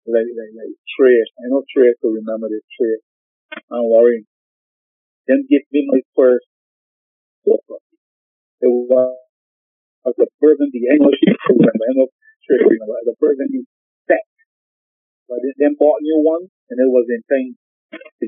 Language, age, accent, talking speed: English, 40-59, American, 165 wpm